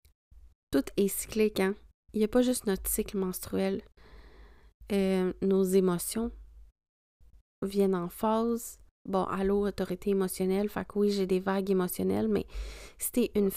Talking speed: 145 wpm